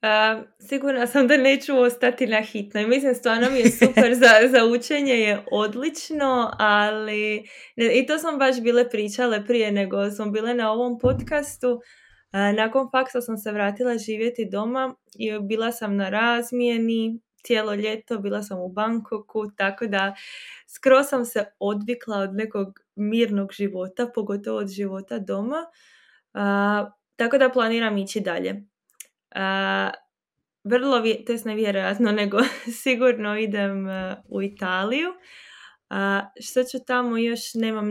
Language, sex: Croatian, female